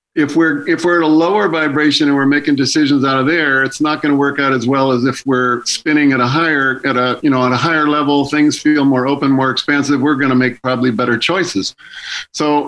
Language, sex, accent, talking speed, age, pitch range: English, male, American, 245 wpm, 50-69, 135-165 Hz